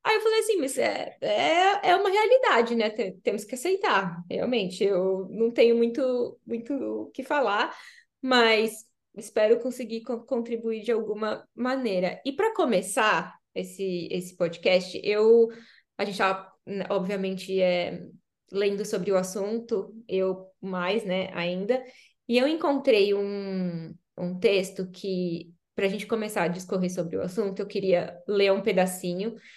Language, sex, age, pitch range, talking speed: Portuguese, female, 10-29, 195-235 Hz, 145 wpm